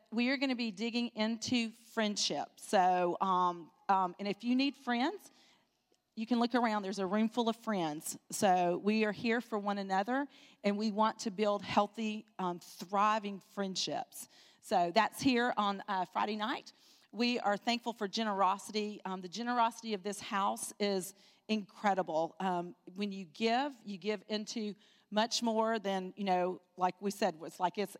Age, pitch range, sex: 40-59, 185-225 Hz, female